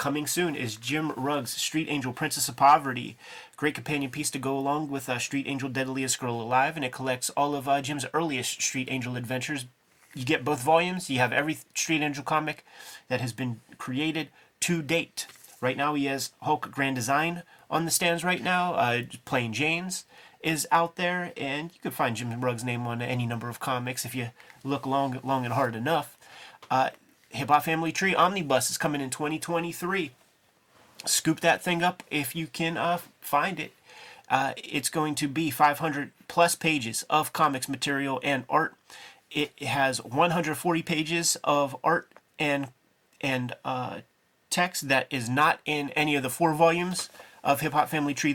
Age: 30-49